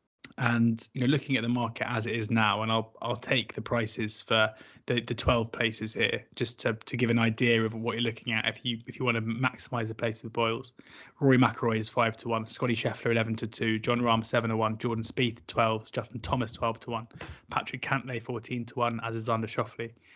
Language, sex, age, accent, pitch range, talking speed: English, male, 20-39, British, 115-125 Hz, 230 wpm